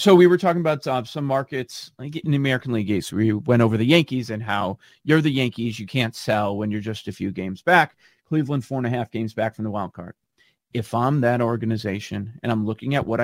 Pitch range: 120-175 Hz